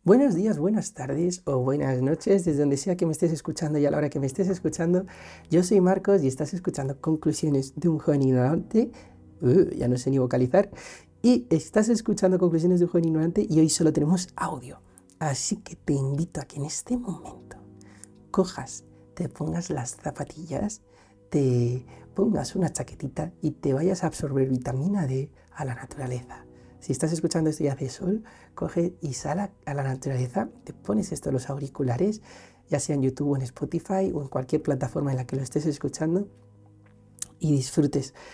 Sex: male